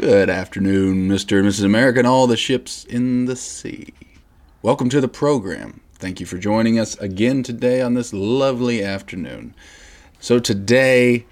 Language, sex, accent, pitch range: English, male, American, 90-110 Hz